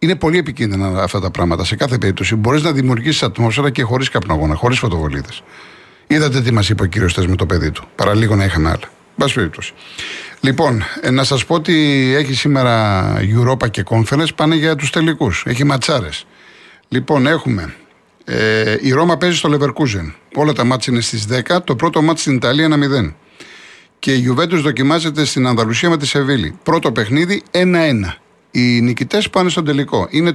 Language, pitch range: Greek, 115-155 Hz